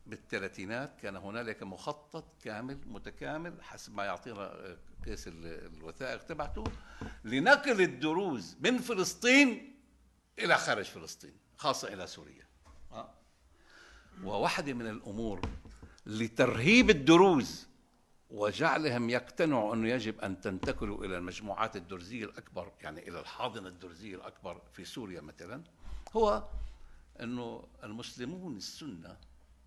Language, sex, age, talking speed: English, male, 60-79, 100 wpm